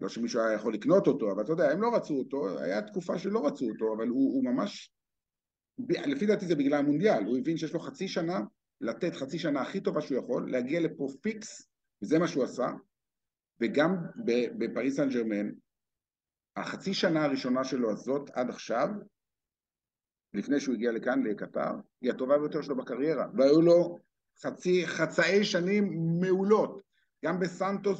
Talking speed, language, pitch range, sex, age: 160 wpm, Hebrew, 135-190 Hz, male, 50-69